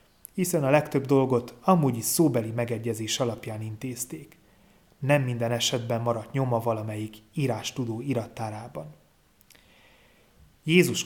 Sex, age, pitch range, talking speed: male, 30-49, 115-145 Hz, 110 wpm